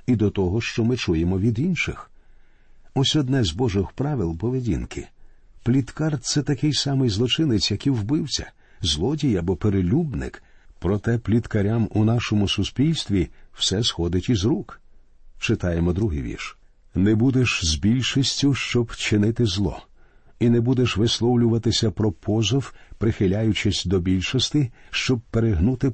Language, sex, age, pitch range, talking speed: Ukrainian, male, 50-69, 100-125 Hz, 125 wpm